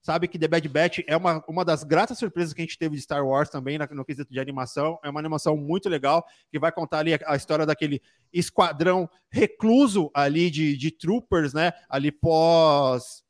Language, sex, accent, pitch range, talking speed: Portuguese, male, Brazilian, 150-185 Hz, 210 wpm